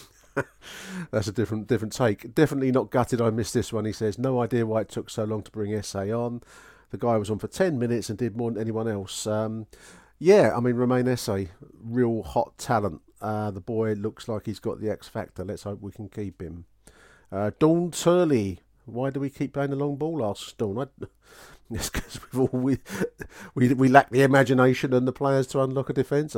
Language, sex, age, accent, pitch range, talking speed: English, male, 40-59, British, 100-130 Hz, 210 wpm